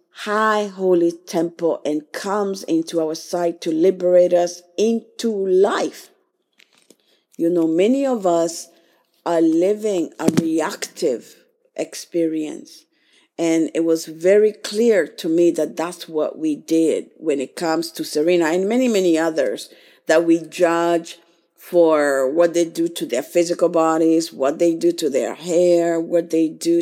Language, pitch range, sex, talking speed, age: English, 165-220 Hz, female, 145 wpm, 50-69